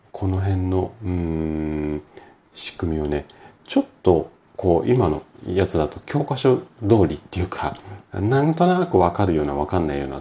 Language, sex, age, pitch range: Japanese, male, 40-59, 80-120 Hz